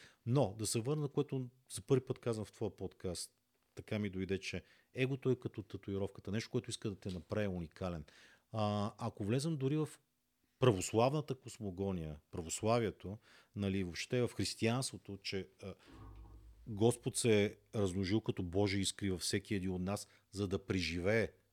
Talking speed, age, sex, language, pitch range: 160 wpm, 50-69, male, Bulgarian, 90-115 Hz